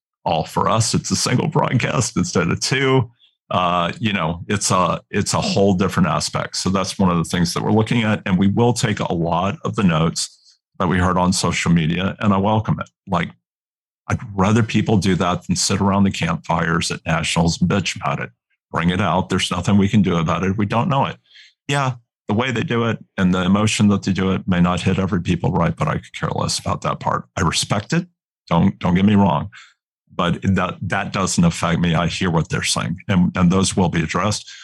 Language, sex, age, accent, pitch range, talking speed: English, male, 50-69, American, 95-115 Hz, 230 wpm